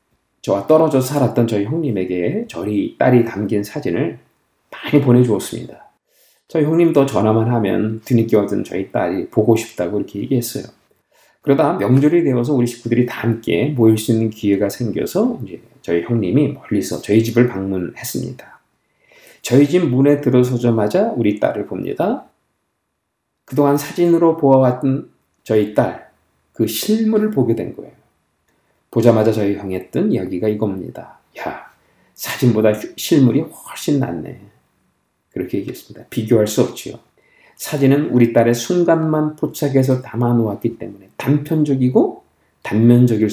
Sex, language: male, Korean